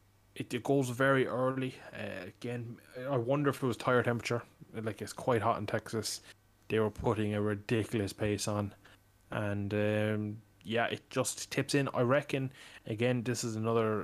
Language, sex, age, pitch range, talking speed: English, male, 20-39, 100-120 Hz, 170 wpm